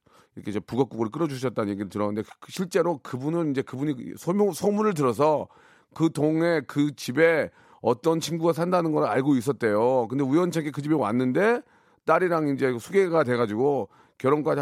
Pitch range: 125-165 Hz